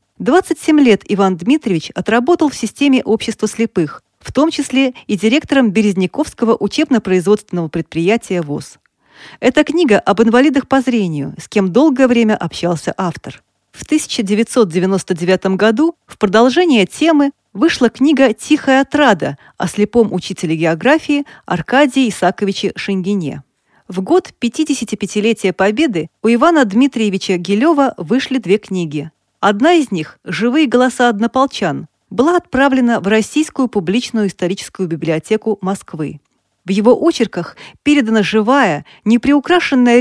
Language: Russian